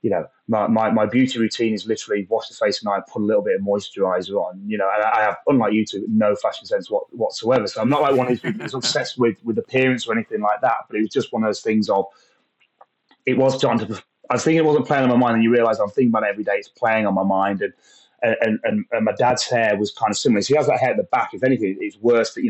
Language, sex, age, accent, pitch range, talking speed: English, male, 30-49, British, 105-145 Hz, 295 wpm